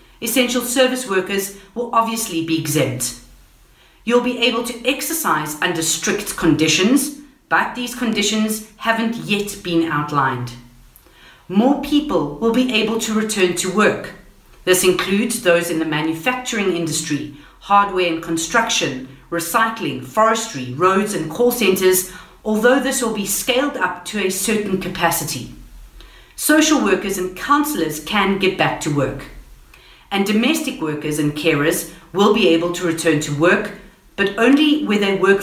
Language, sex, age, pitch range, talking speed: English, female, 40-59, 165-230 Hz, 140 wpm